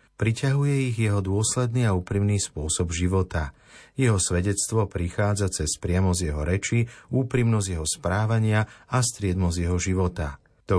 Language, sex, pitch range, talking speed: Slovak, male, 90-110 Hz, 140 wpm